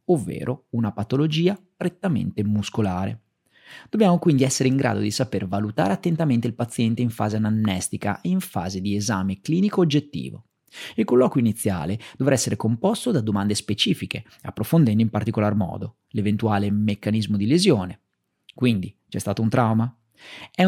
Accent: native